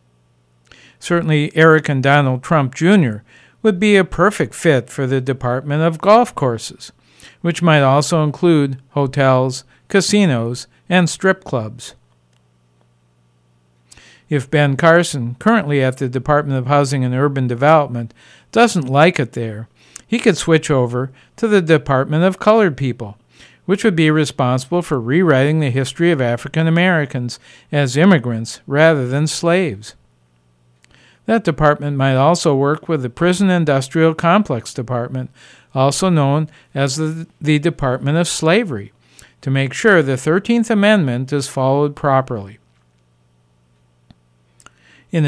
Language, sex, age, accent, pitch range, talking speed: English, male, 50-69, American, 125-160 Hz, 130 wpm